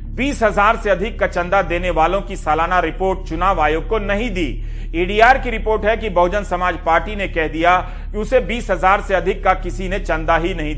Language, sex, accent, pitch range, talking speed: Hindi, male, native, 170-215 Hz, 205 wpm